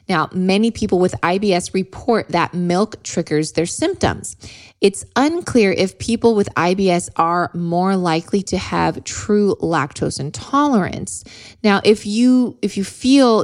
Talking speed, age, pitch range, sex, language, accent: 140 wpm, 20-39, 170-210 Hz, female, English, American